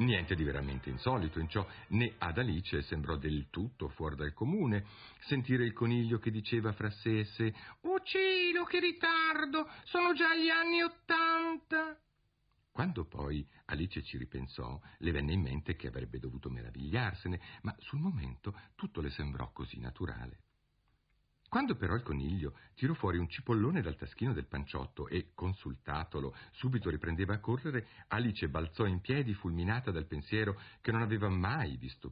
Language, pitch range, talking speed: Italian, 70-115 Hz, 155 wpm